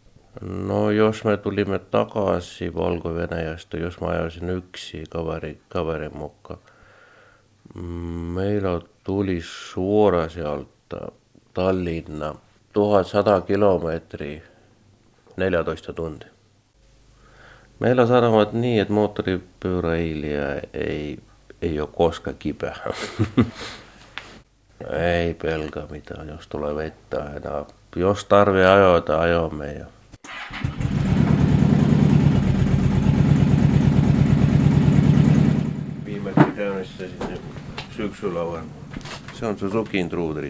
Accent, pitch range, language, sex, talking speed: native, 80-100 Hz, Finnish, male, 75 wpm